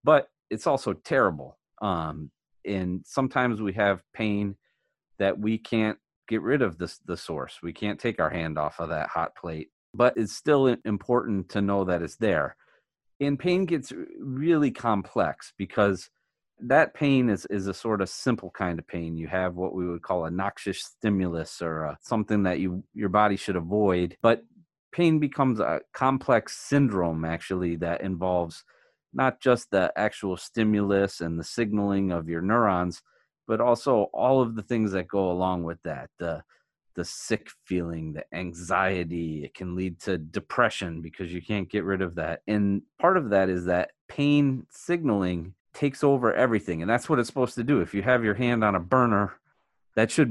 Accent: American